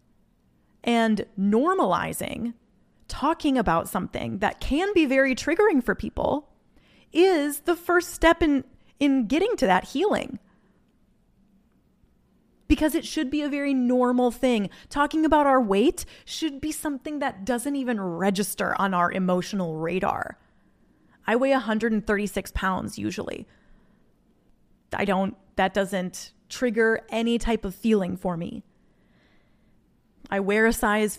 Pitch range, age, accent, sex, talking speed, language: 195-265 Hz, 20-39, American, female, 125 wpm, English